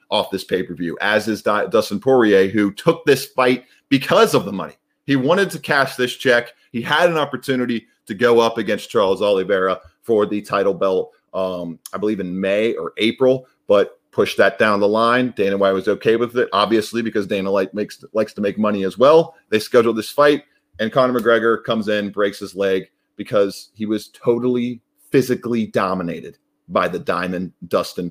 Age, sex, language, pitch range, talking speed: 30-49, male, English, 105-140 Hz, 185 wpm